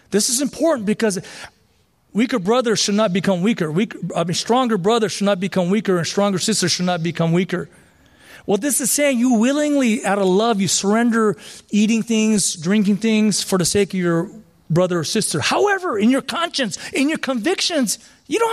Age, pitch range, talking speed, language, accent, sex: 40-59, 165-245 Hz, 190 wpm, English, American, male